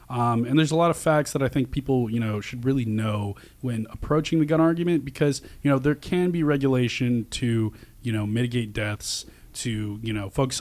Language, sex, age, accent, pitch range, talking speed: English, male, 20-39, American, 105-125 Hz, 210 wpm